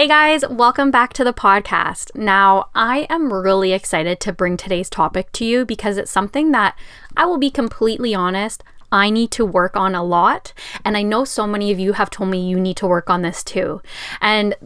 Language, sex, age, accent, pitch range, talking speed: English, female, 10-29, American, 185-225 Hz, 215 wpm